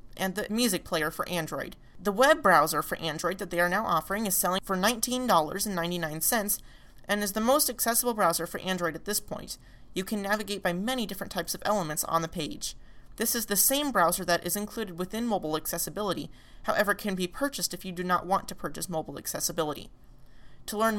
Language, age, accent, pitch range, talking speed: English, 30-49, American, 170-220 Hz, 195 wpm